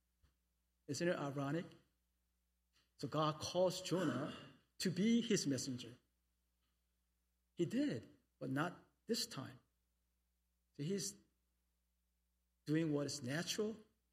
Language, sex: English, male